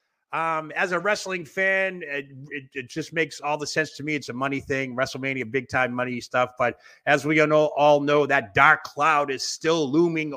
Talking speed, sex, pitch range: 205 wpm, male, 130-165 Hz